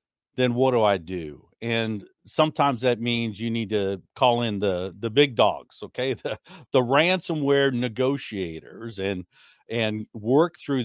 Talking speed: 150 wpm